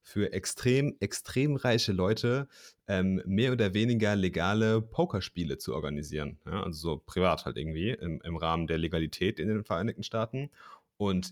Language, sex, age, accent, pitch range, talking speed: German, male, 30-49, German, 90-110 Hz, 150 wpm